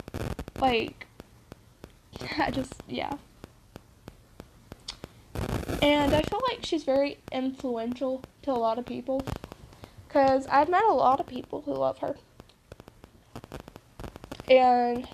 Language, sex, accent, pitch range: English, female, American, 245-280 Hz